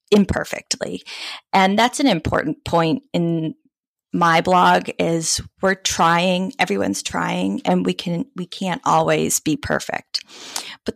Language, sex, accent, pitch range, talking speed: English, female, American, 160-200 Hz, 125 wpm